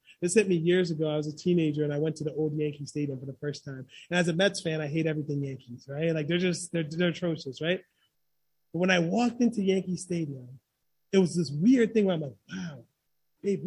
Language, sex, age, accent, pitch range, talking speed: English, male, 30-49, American, 155-215 Hz, 240 wpm